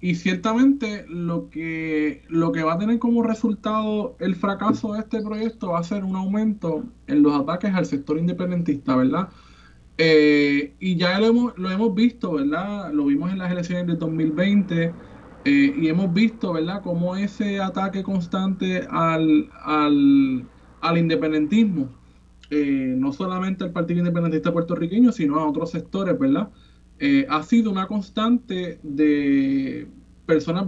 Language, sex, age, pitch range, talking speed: Spanish, male, 20-39, 155-215 Hz, 150 wpm